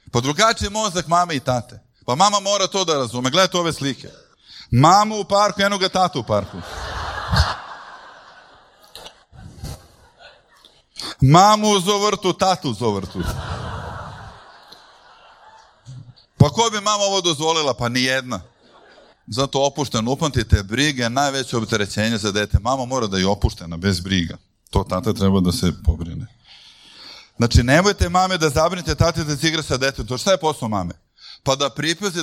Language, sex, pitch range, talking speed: Croatian, male, 115-180 Hz, 135 wpm